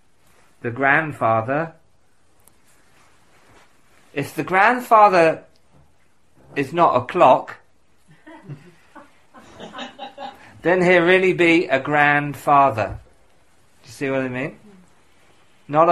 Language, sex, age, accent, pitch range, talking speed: English, male, 40-59, British, 120-170 Hz, 85 wpm